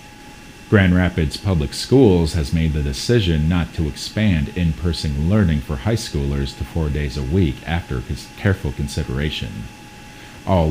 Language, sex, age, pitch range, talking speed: English, male, 40-59, 70-90 Hz, 140 wpm